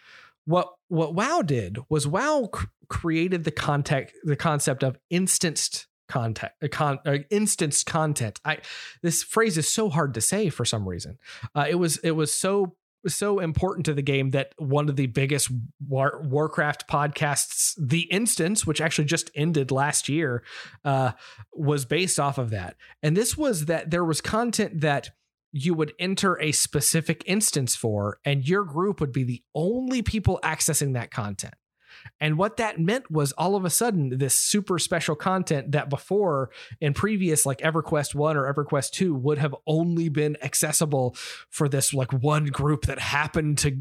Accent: American